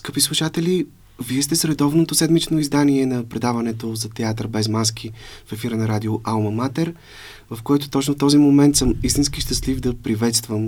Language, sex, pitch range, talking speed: Bulgarian, male, 105-130 Hz, 170 wpm